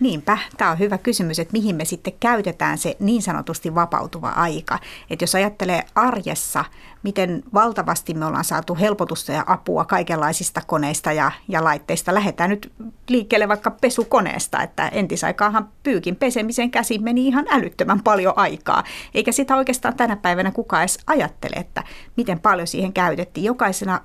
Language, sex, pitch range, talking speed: Finnish, female, 175-220 Hz, 150 wpm